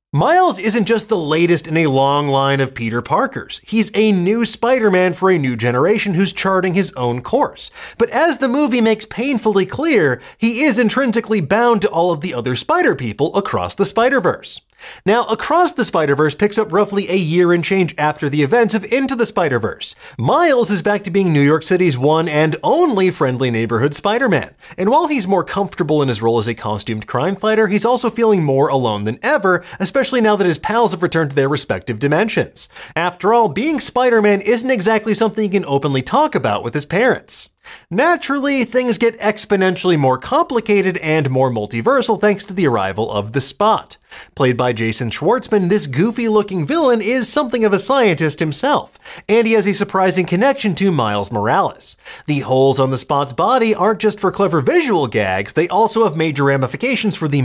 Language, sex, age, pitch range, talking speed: English, male, 30-49, 145-225 Hz, 190 wpm